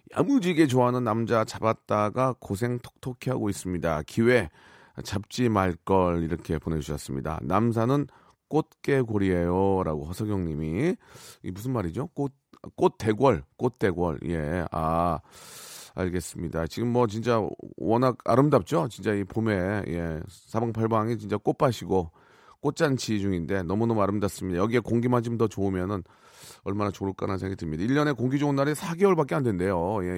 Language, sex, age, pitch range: Korean, male, 40-59, 95-135 Hz